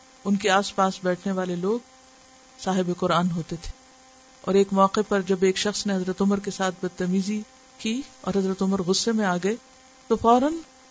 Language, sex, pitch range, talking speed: Urdu, female, 200-260 Hz, 185 wpm